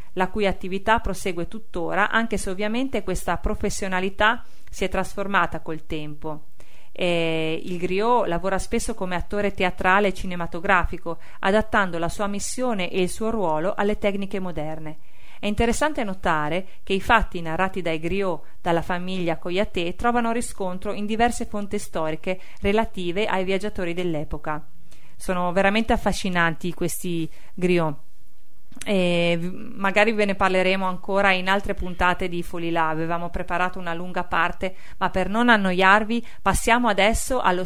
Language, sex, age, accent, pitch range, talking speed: Italian, female, 40-59, native, 175-215 Hz, 135 wpm